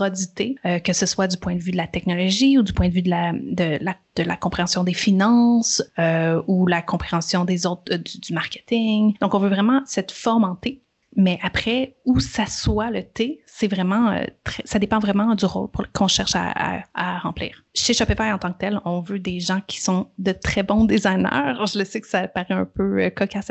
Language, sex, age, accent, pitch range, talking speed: French, female, 30-49, Canadian, 185-225 Hz, 240 wpm